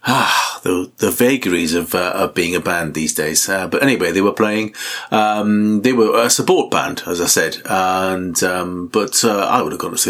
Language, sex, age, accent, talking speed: English, male, 30-49, British, 220 wpm